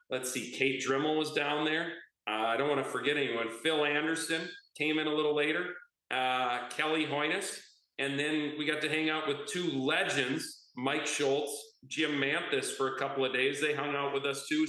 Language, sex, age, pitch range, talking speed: English, male, 40-59, 130-155 Hz, 200 wpm